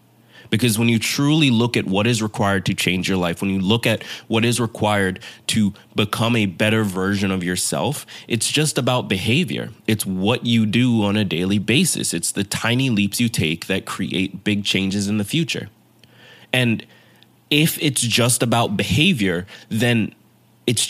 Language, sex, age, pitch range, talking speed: English, male, 20-39, 105-120 Hz, 170 wpm